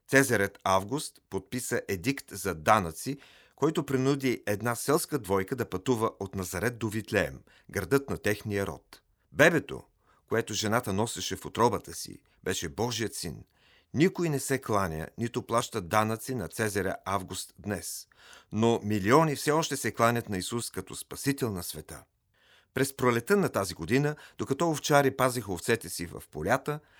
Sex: male